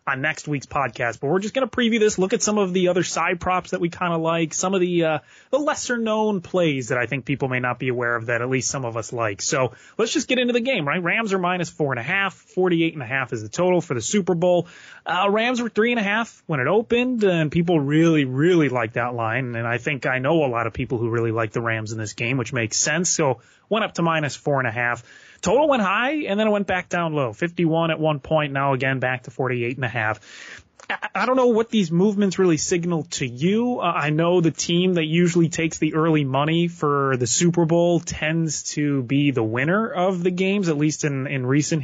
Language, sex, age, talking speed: English, male, 30-49, 270 wpm